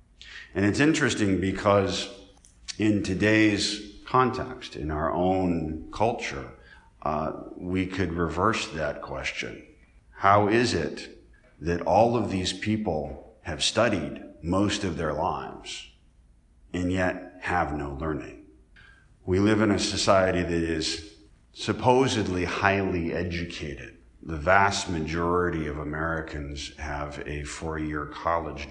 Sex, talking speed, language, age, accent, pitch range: male, 115 wpm, English, 50-69, American, 75-95 Hz